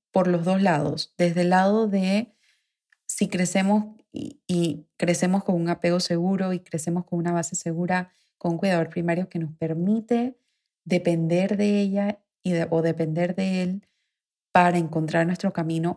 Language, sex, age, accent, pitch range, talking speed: Spanish, female, 20-39, Venezuelan, 170-200 Hz, 160 wpm